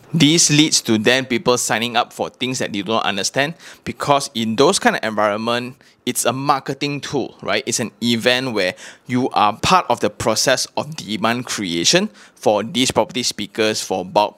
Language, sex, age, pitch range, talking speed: English, male, 20-39, 115-155 Hz, 180 wpm